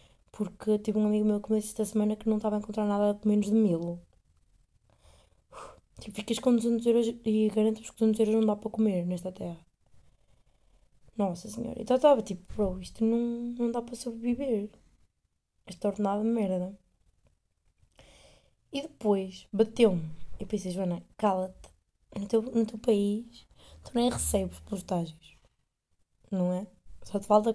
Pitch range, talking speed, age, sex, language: 180-225 Hz, 165 wpm, 20-39, female, Portuguese